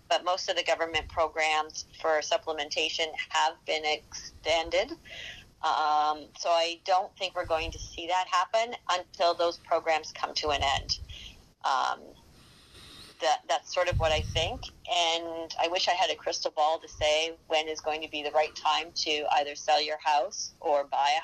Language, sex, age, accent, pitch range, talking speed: English, female, 30-49, American, 155-180 Hz, 175 wpm